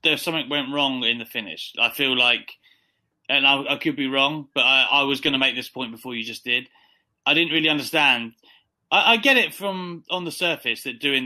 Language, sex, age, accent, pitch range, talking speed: English, male, 30-49, British, 115-160 Hz, 230 wpm